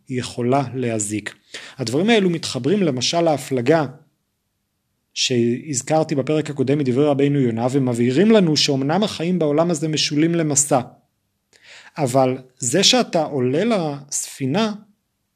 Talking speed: 100 wpm